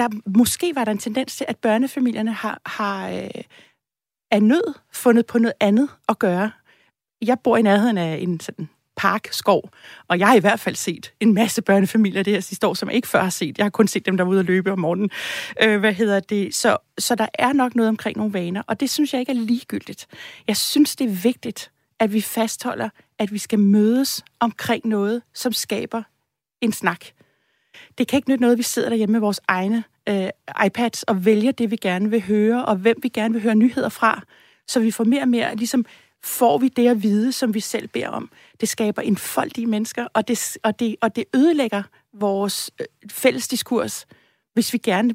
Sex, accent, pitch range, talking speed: female, native, 210-245 Hz, 210 wpm